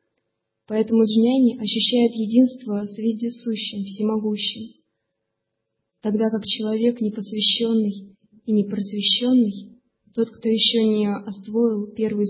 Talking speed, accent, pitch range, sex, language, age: 95 wpm, native, 205-235 Hz, female, Russian, 20-39